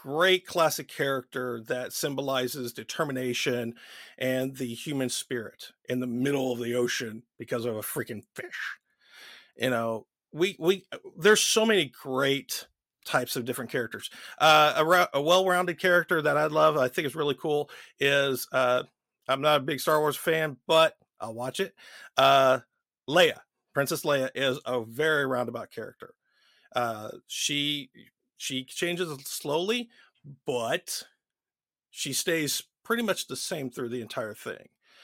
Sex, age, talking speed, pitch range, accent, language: male, 40-59, 145 wpm, 130-165 Hz, American, English